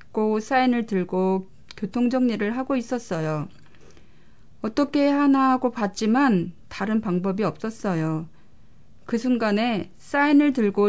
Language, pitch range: Korean, 190-240 Hz